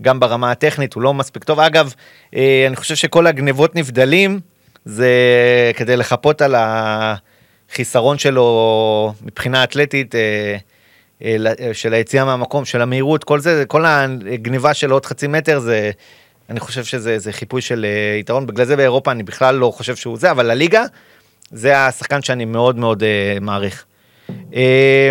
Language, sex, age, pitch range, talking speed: Hebrew, male, 30-49, 115-145 Hz, 155 wpm